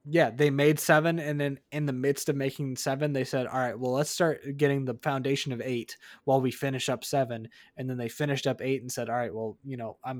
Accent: American